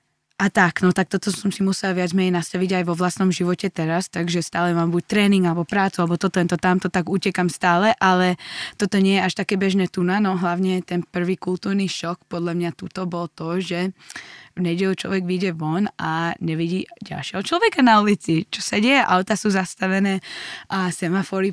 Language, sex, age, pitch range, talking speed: Slovak, female, 20-39, 175-195 Hz, 190 wpm